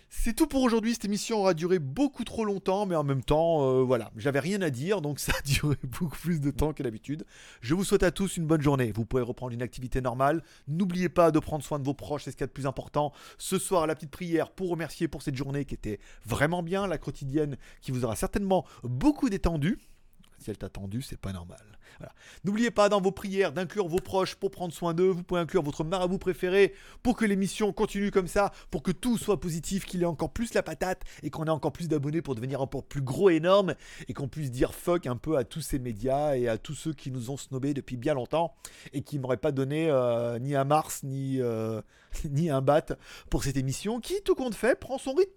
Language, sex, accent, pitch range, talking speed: French, male, French, 135-190 Hz, 245 wpm